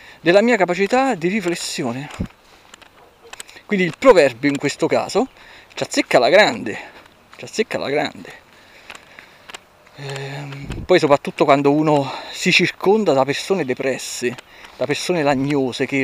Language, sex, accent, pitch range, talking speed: Italian, male, native, 140-200 Hz, 125 wpm